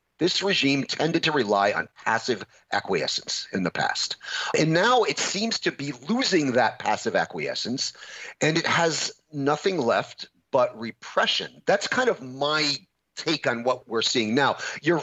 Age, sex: 40-59, male